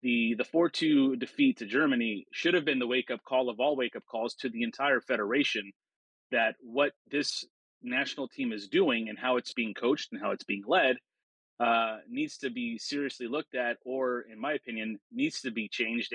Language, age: English, 30-49